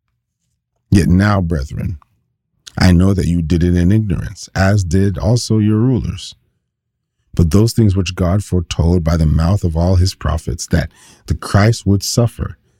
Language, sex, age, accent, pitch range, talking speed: English, male, 40-59, American, 85-100 Hz, 160 wpm